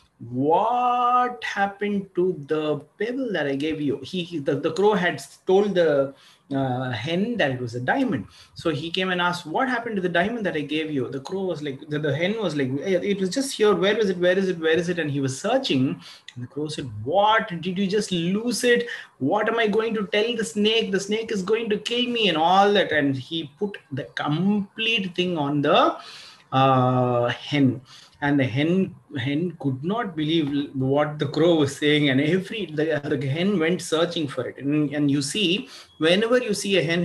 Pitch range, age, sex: 145-210 Hz, 30-49, male